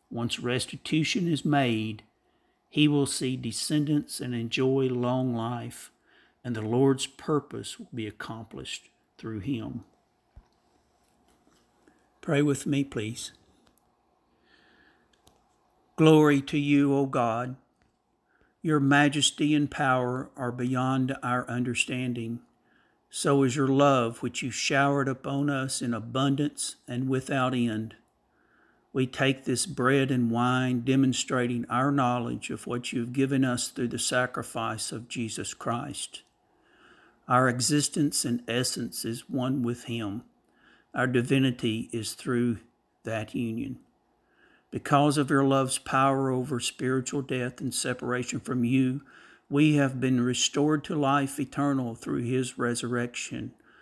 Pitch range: 120-140 Hz